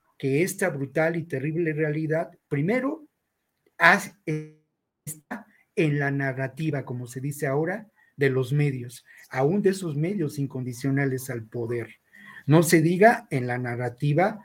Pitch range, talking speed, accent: 135-180 Hz, 130 wpm, Mexican